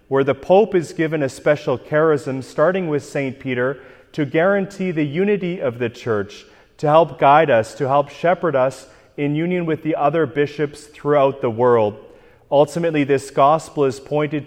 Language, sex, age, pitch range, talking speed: English, male, 30-49, 130-165 Hz, 170 wpm